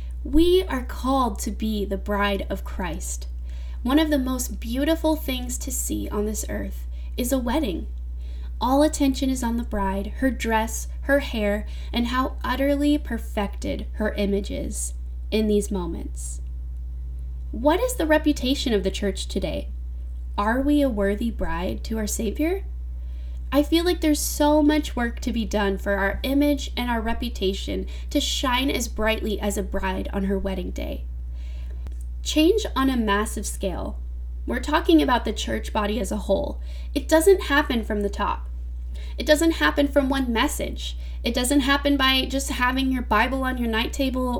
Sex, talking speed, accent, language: female, 170 wpm, American, English